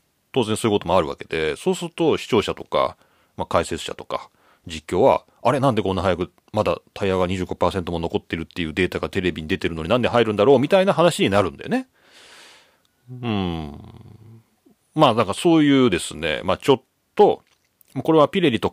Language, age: Japanese, 40-59